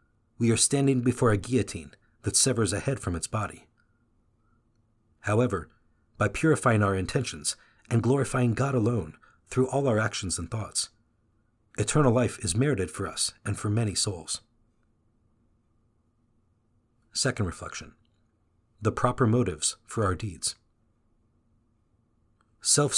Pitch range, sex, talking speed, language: 105-120 Hz, male, 125 wpm, English